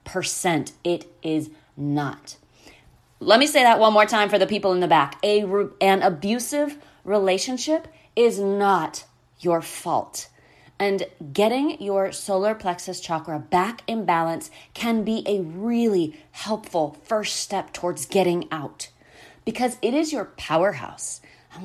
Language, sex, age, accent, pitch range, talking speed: English, female, 30-49, American, 160-220 Hz, 140 wpm